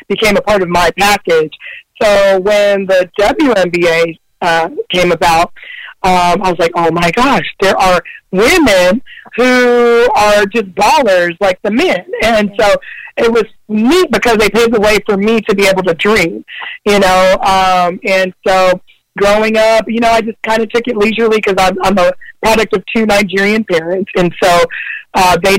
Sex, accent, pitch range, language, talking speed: female, American, 185-225 Hz, English, 175 wpm